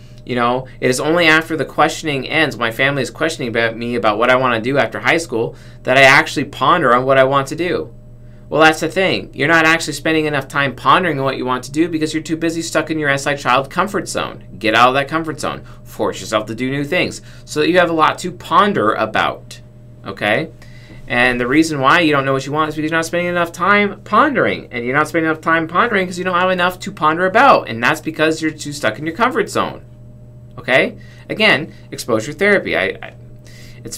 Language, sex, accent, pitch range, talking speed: English, male, American, 115-155 Hz, 235 wpm